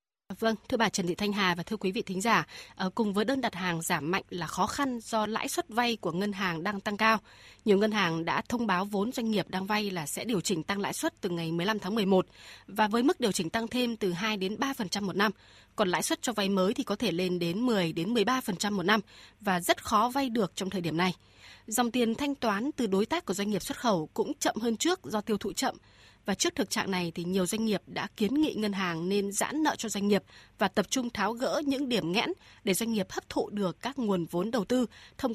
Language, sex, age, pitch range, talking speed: Vietnamese, female, 20-39, 190-230 Hz, 260 wpm